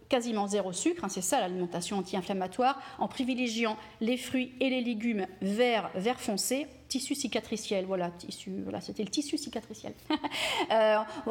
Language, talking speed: French, 145 wpm